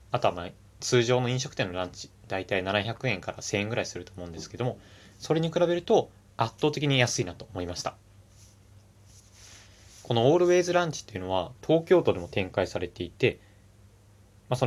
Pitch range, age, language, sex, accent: 100-125 Hz, 20-39, Japanese, male, native